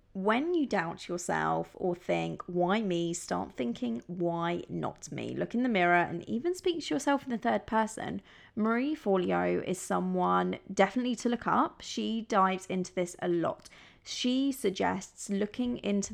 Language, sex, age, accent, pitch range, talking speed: English, female, 20-39, British, 180-240 Hz, 165 wpm